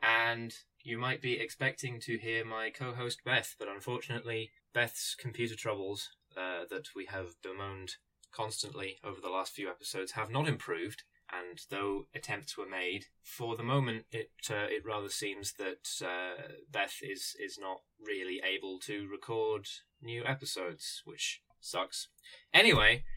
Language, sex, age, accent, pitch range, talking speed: English, male, 10-29, British, 100-130 Hz, 150 wpm